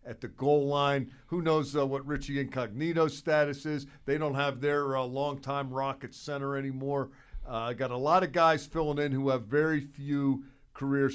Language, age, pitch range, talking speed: English, 50-69, 125-145 Hz, 185 wpm